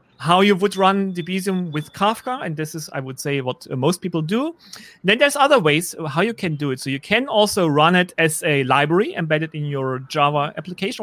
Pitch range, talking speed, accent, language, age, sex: 155-205 Hz, 225 wpm, German, English, 30-49, male